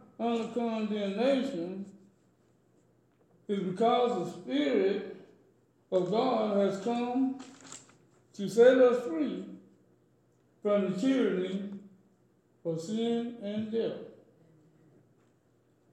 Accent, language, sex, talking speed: American, English, male, 80 wpm